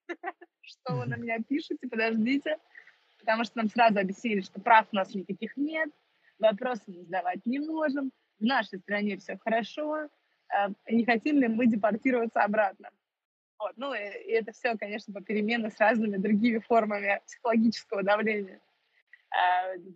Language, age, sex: Russian, 20-39, female